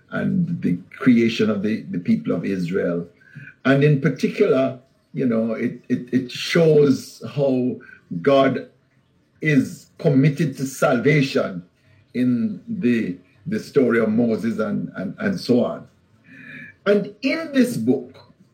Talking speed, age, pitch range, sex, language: 125 wpm, 60-79, 130-180 Hz, male, English